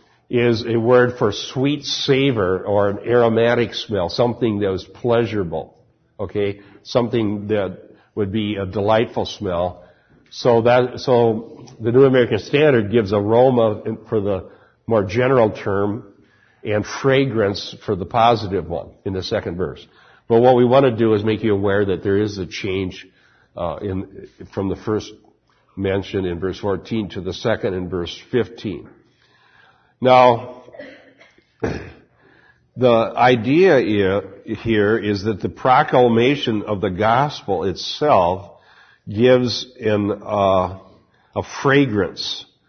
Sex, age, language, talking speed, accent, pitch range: male, 50-69, English, 130 wpm, American, 100-120 Hz